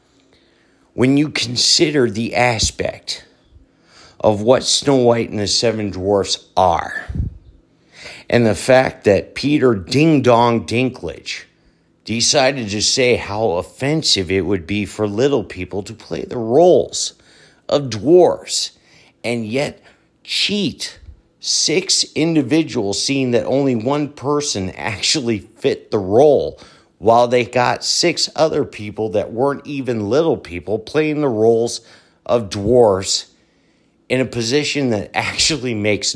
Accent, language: American, English